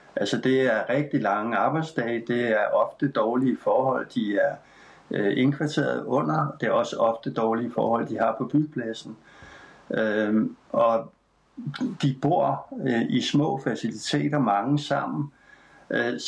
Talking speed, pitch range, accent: 135 wpm, 115-150 Hz, native